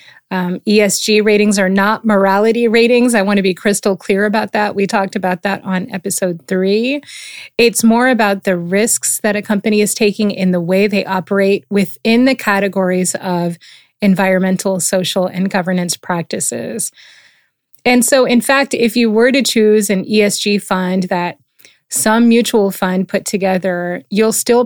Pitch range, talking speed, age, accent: 185-220 Hz, 160 wpm, 30-49, American